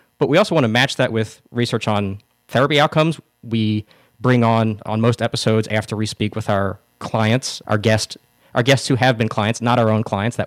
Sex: male